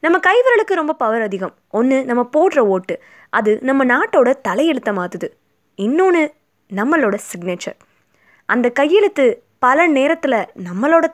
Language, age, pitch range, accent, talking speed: Tamil, 20-39, 205-300 Hz, native, 120 wpm